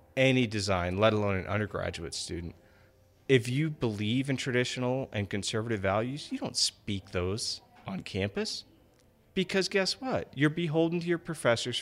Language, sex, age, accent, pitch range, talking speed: English, male, 40-59, American, 100-130 Hz, 145 wpm